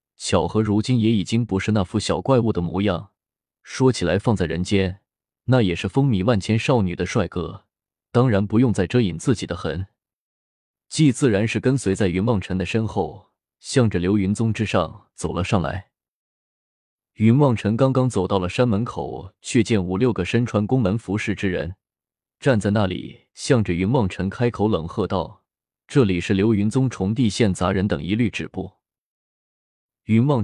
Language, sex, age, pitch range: Chinese, male, 20-39, 95-115 Hz